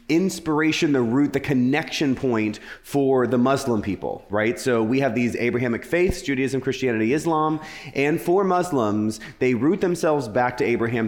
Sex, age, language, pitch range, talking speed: male, 30-49, English, 110-145 Hz, 155 wpm